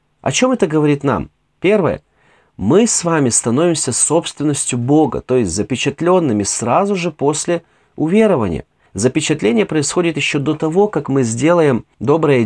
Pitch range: 115-150 Hz